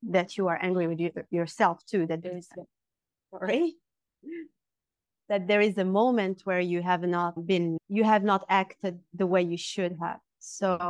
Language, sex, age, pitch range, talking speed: English, female, 30-49, 170-200 Hz, 170 wpm